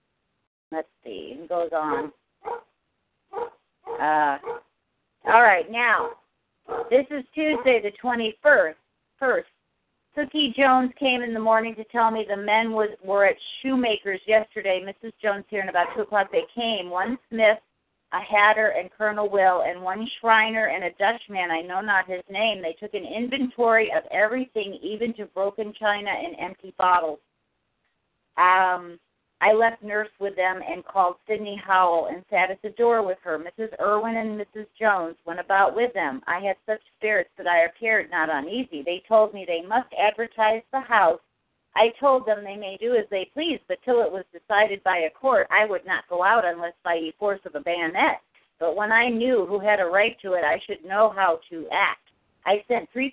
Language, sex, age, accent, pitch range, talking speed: English, female, 40-59, American, 185-230 Hz, 185 wpm